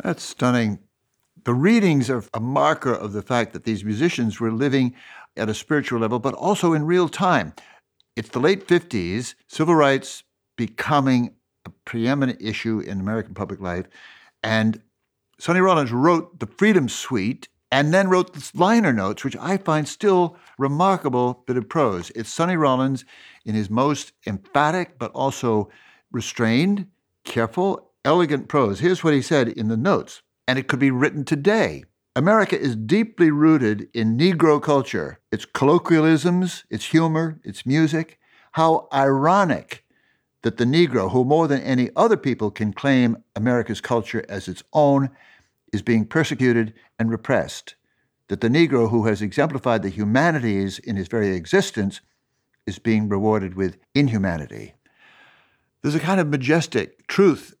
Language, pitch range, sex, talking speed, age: English, 110-160 Hz, male, 150 wpm, 60-79